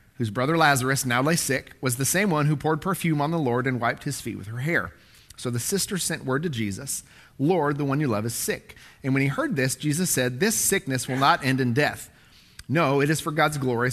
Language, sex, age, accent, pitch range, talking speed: English, male, 40-59, American, 120-155 Hz, 245 wpm